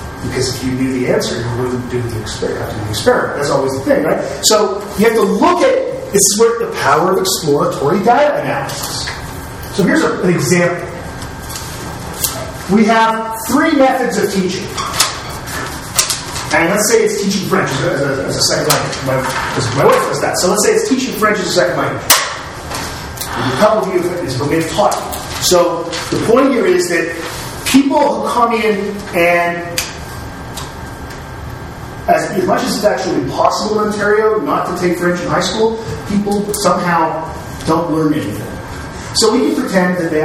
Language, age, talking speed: English, 30-49, 165 wpm